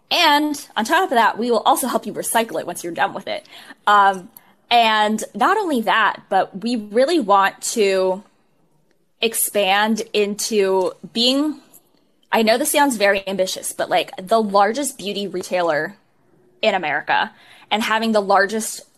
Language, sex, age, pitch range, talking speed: English, female, 20-39, 195-235 Hz, 150 wpm